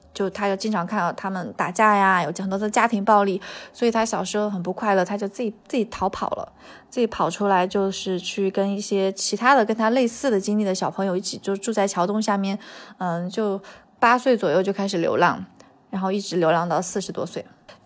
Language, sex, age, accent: Chinese, female, 20-39, native